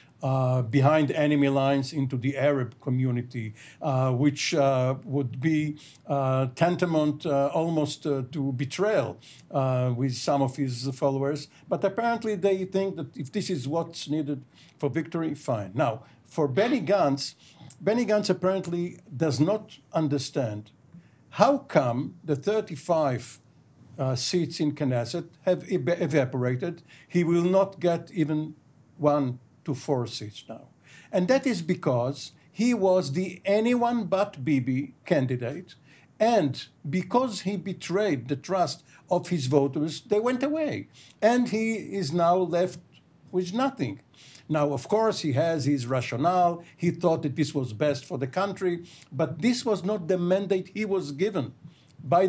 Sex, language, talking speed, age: male, English, 145 wpm, 60-79